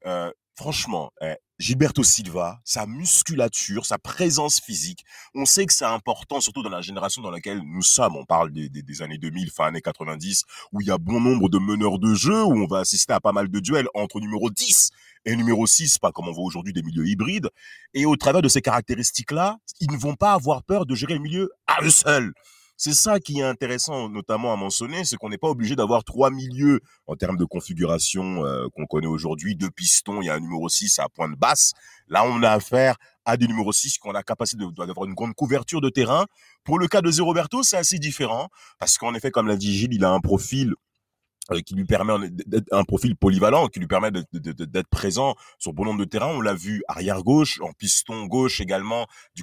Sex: male